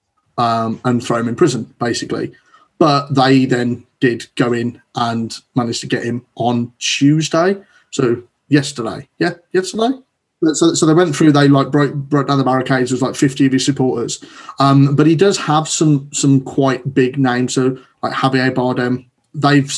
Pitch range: 120-145 Hz